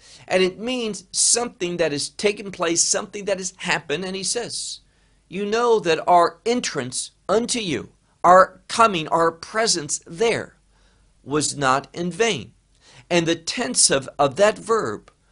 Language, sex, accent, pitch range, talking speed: English, male, American, 145-195 Hz, 150 wpm